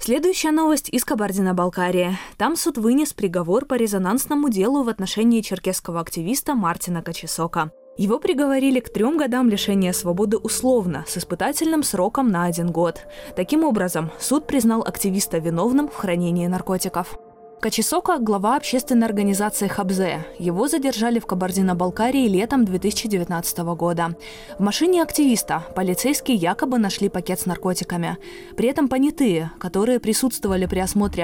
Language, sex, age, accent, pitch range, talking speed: Russian, female, 20-39, native, 175-250 Hz, 130 wpm